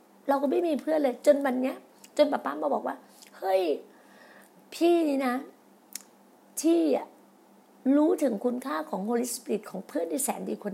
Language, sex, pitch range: Thai, female, 230-290 Hz